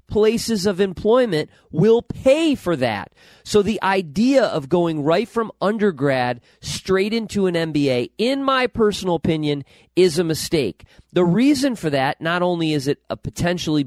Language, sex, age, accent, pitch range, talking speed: English, male, 40-59, American, 135-195 Hz, 150 wpm